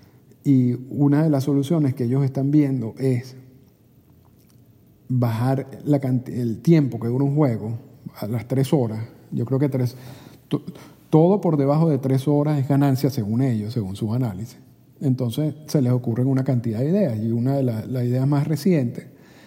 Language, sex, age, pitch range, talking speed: Spanish, male, 50-69, 120-145 Hz, 175 wpm